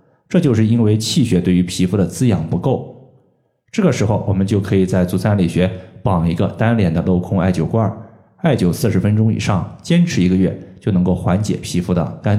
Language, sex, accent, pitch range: Chinese, male, native, 90-120 Hz